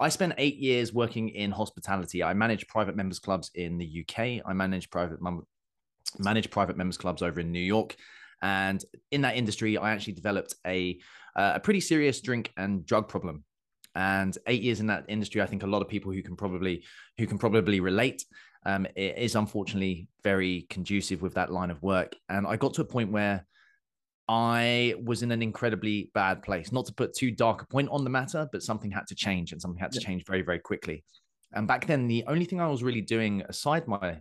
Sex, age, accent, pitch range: male, 20-39, British, 95-120 Hz